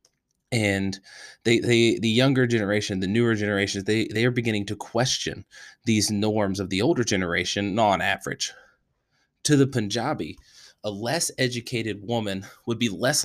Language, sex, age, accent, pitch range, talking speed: English, male, 20-39, American, 100-115 Hz, 140 wpm